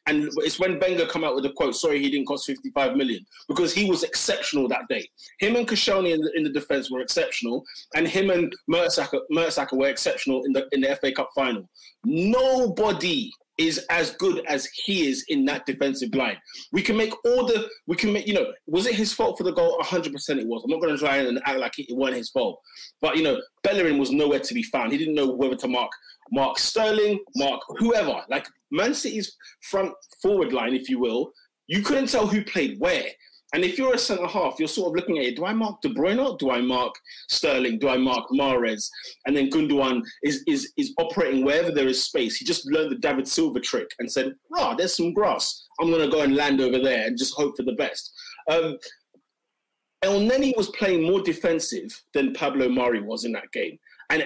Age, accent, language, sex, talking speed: 20-39, British, English, male, 220 wpm